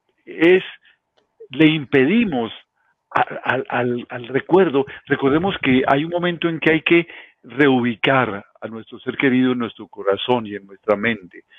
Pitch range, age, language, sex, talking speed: 115-145 Hz, 50-69, Spanish, male, 140 wpm